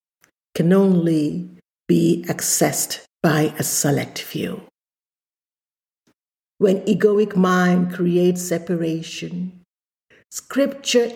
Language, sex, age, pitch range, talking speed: English, female, 60-79, 165-205 Hz, 75 wpm